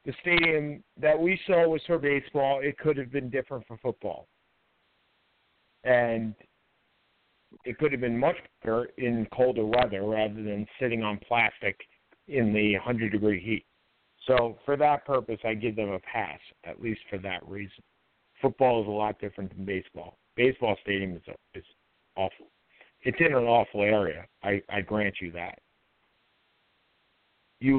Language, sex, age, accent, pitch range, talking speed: English, male, 50-69, American, 105-135 Hz, 155 wpm